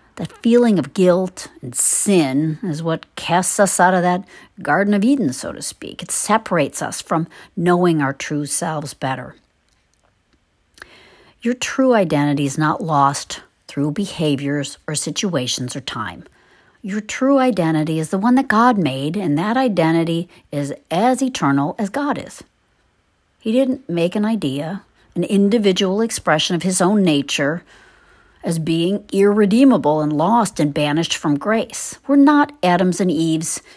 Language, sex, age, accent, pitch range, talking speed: English, female, 60-79, American, 150-205 Hz, 150 wpm